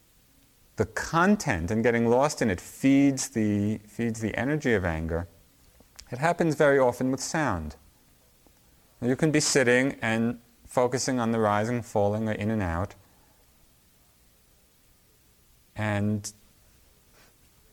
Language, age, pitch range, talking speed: English, 30-49, 95-145 Hz, 120 wpm